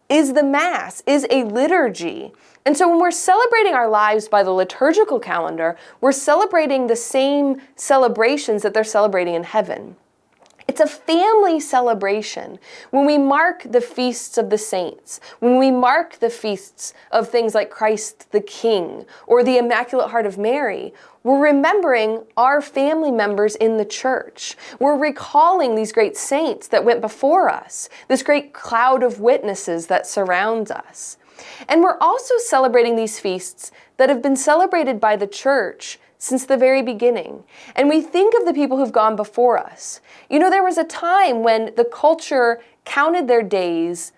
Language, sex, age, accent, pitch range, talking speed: English, female, 20-39, American, 220-295 Hz, 165 wpm